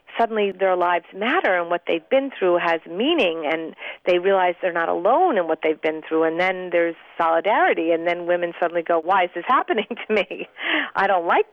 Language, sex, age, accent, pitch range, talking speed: English, female, 40-59, American, 170-210 Hz, 210 wpm